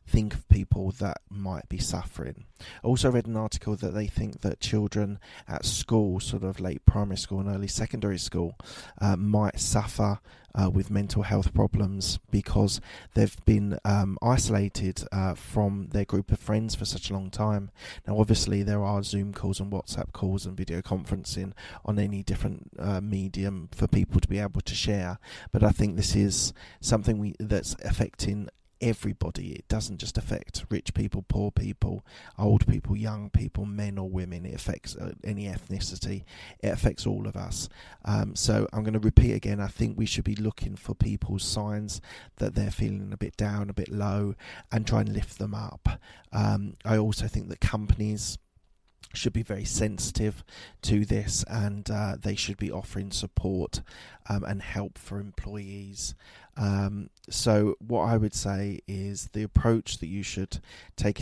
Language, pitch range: English, 95-105 Hz